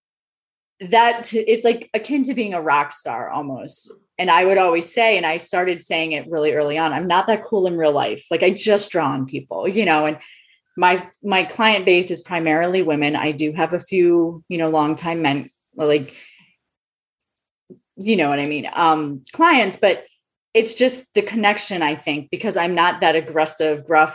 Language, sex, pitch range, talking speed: English, female, 155-205 Hz, 190 wpm